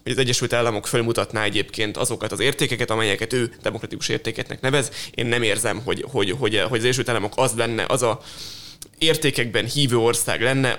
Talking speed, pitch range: 180 wpm, 115-135 Hz